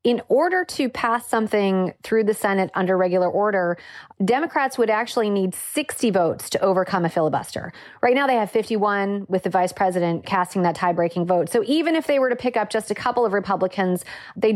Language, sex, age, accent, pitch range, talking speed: English, female, 30-49, American, 190-245 Hz, 200 wpm